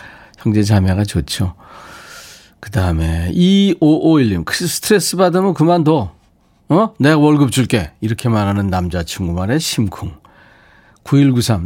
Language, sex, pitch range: Korean, male, 105-150 Hz